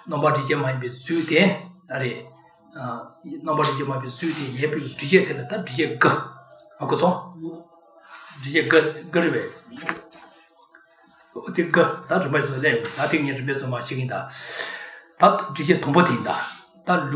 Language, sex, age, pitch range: English, male, 60-79, 145-185 Hz